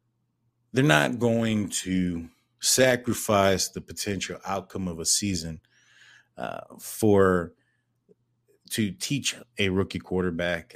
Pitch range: 95-115 Hz